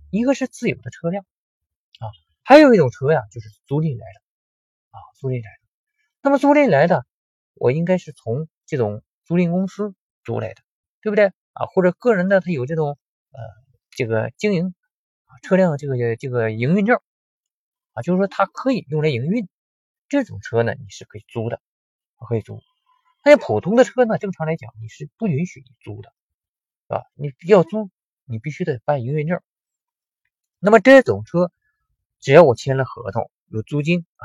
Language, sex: Chinese, male